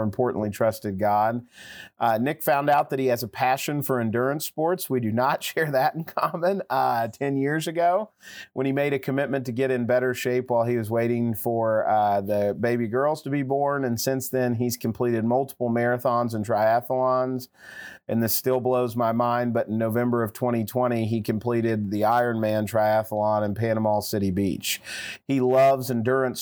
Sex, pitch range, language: male, 110-130 Hz, English